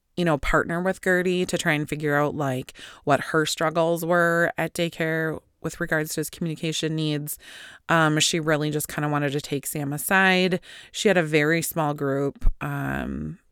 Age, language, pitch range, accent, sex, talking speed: 20-39, English, 145-175 Hz, American, female, 180 wpm